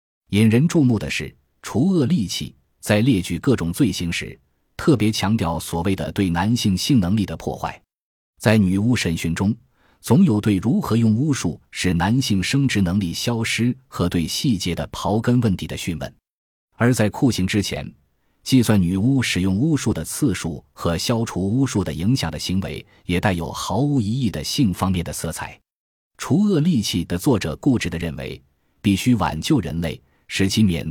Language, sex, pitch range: Chinese, male, 85-115 Hz